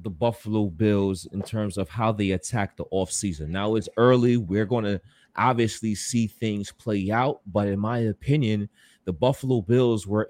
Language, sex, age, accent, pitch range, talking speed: English, male, 30-49, American, 110-165 Hz, 175 wpm